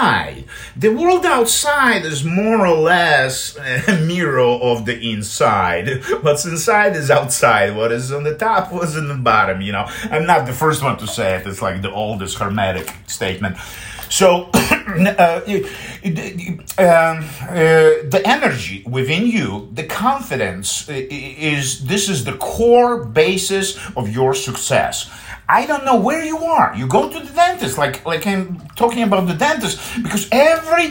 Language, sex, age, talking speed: English, male, 50-69, 155 wpm